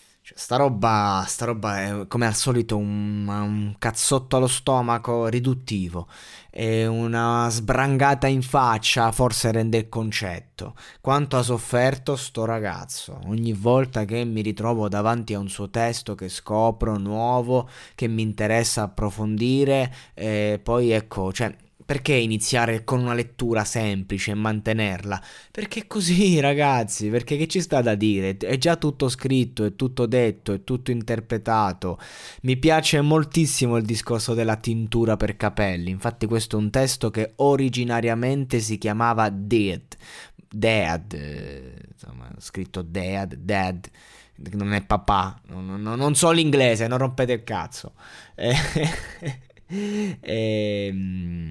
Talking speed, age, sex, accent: 125 wpm, 20-39, male, native